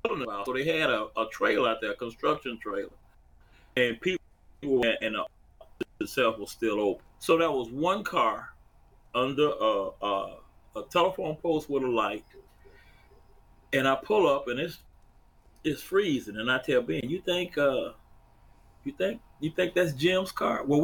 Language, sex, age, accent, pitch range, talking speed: English, male, 30-49, American, 130-180 Hz, 165 wpm